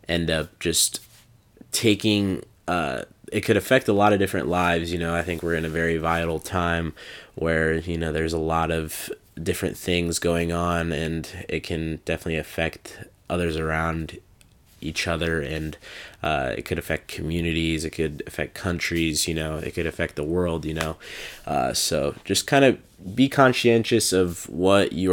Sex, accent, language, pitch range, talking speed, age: male, American, English, 80-90 Hz, 170 wpm, 20-39